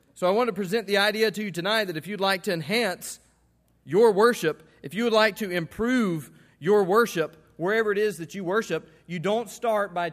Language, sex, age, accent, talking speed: English, male, 40-59, American, 215 wpm